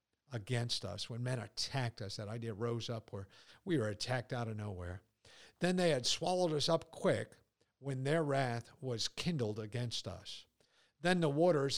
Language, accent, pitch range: English, American, 115-150 Hz